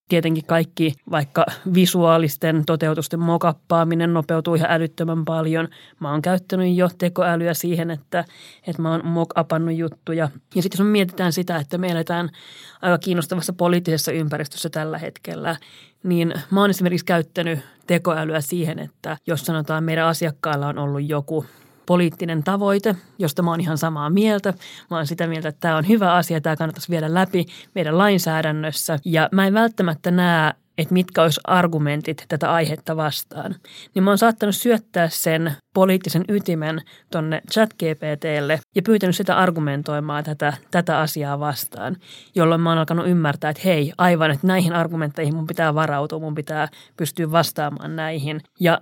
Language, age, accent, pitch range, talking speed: Finnish, 30-49, native, 155-175 Hz, 155 wpm